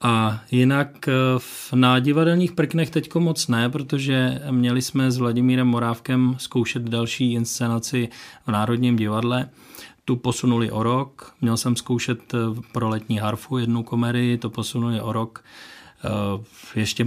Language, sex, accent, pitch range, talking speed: Czech, male, native, 115-130 Hz, 130 wpm